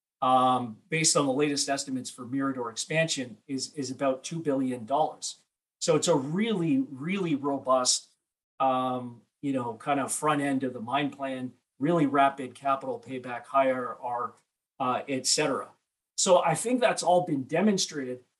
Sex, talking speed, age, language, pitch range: male, 155 wpm, 40-59, English, 130-160 Hz